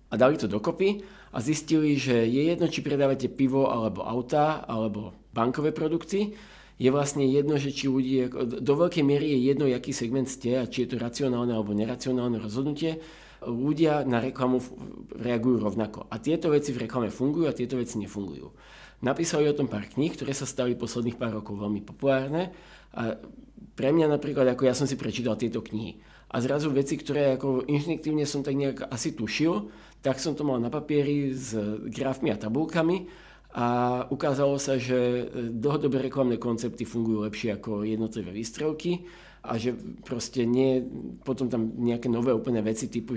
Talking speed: 170 wpm